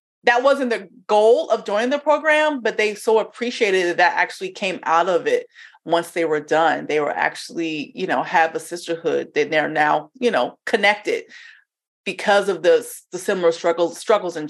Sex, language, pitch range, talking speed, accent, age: female, English, 170-255 Hz, 185 wpm, American, 30-49